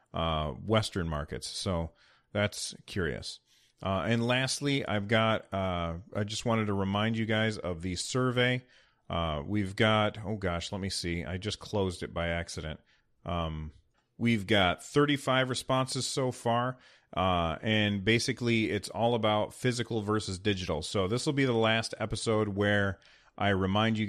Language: English